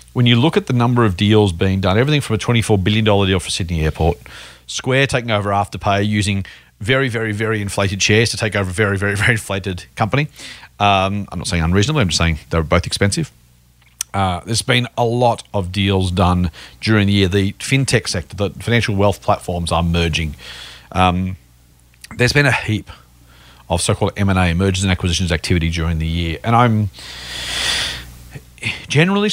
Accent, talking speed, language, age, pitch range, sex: Australian, 180 wpm, English, 40-59, 90-115 Hz, male